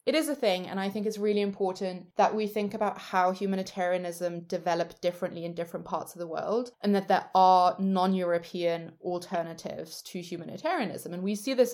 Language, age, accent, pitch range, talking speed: English, 20-39, British, 175-200 Hz, 185 wpm